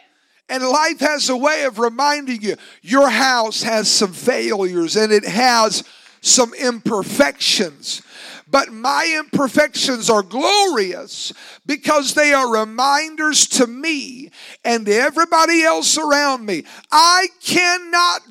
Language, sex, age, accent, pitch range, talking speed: English, male, 50-69, American, 205-305 Hz, 120 wpm